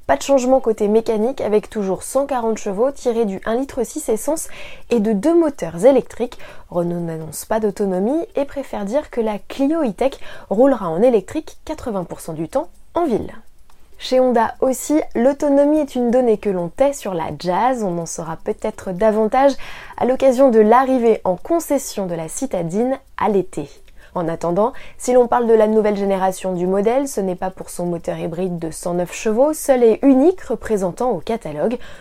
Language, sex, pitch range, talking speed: French, female, 185-265 Hz, 180 wpm